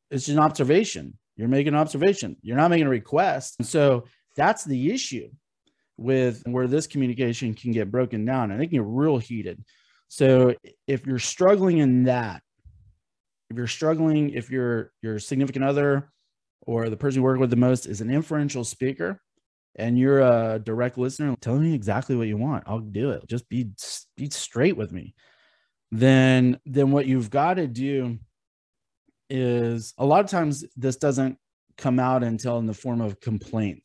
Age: 30-49